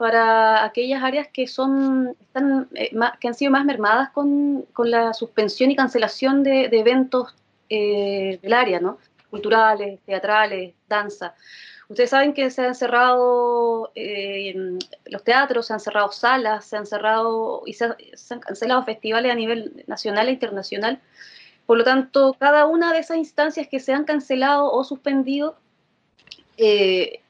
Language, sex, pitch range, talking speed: Spanish, female, 230-285 Hz, 155 wpm